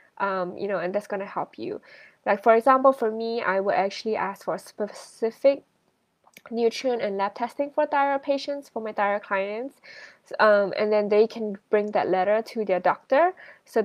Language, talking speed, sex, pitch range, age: English, 190 wpm, female, 190-230 Hz, 10-29